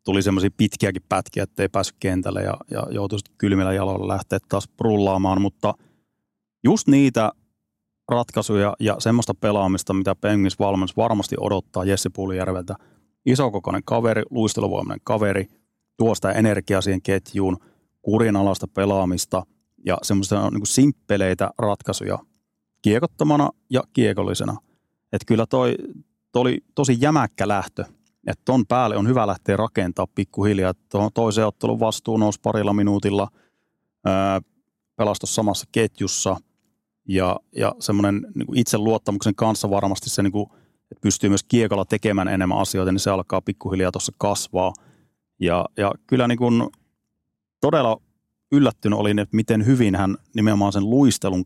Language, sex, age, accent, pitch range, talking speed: Finnish, male, 30-49, native, 95-110 Hz, 130 wpm